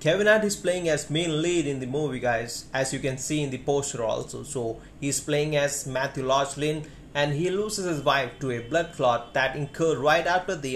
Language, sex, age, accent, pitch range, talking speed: Hindi, male, 30-49, native, 130-150 Hz, 225 wpm